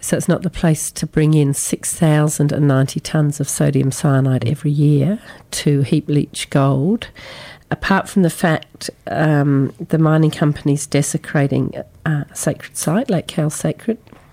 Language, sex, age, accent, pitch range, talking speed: English, female, 40-59, British, 145-175 Hz, 140 wpm